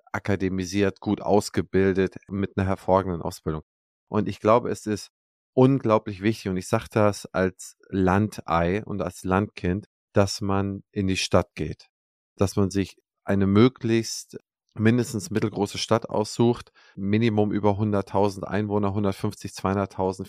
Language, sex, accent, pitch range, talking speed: German, male, German, 95-105 Hz, 125 wpm